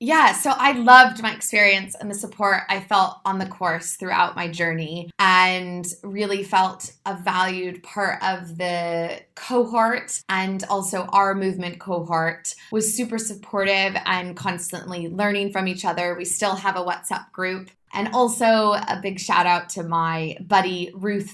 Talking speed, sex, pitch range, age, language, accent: 155 wpm, female, 175-205 Hz, 20-39, English, American